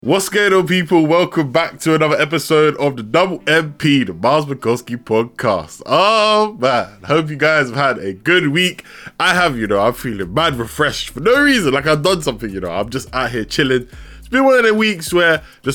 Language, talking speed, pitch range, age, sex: English, 215 wpm, 120-175 Hz, 10-29, male